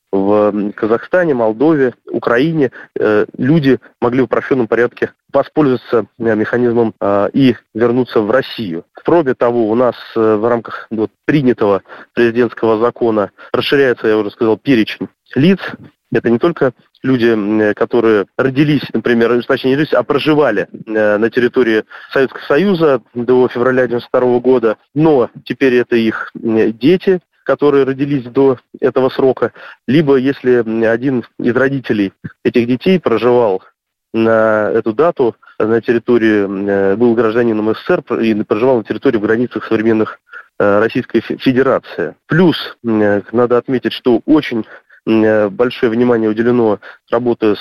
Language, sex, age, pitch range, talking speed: Russian, male, 20-39, 110-130 Hz, 115 wpm